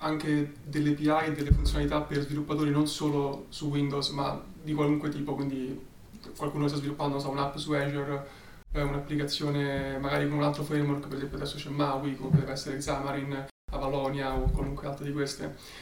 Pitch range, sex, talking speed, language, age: 140-150 Hz, male, 170 wpm, Italian, 30-49